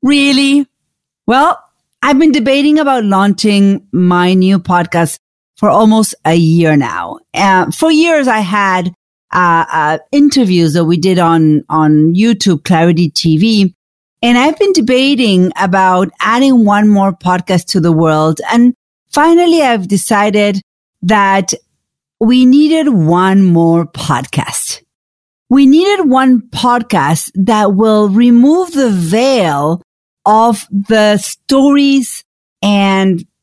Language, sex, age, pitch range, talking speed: English, female, 40-59, 175-255 Hz, 120 wpm